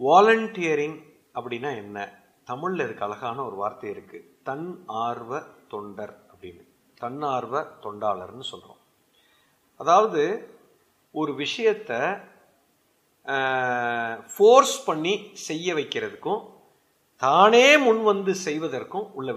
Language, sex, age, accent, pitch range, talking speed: Tamil, male, 50-69, native, 145-230 Hz, 75 wpm